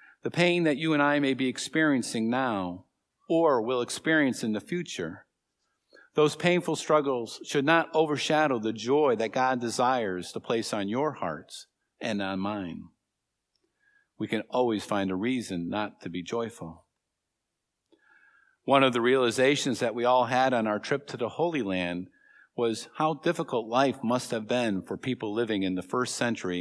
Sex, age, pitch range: male, 50-69, 105-145 Hz